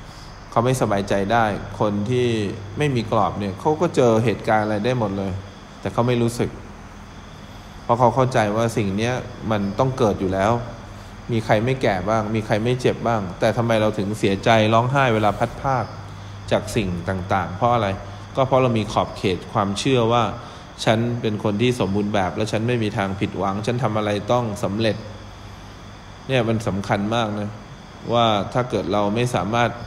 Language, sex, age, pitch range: English, male, 20-39, 100-115 Hz